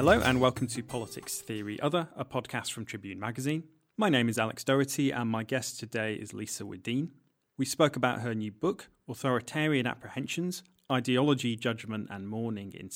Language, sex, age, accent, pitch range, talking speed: English, male, 30-49, British, 110-135 Hz, 170 wpm